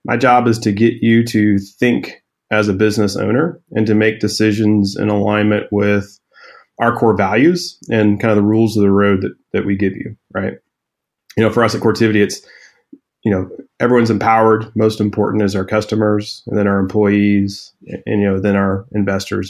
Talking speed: 190 wpm